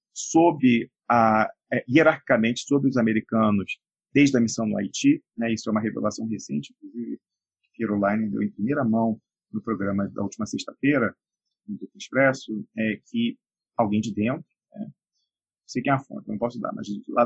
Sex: male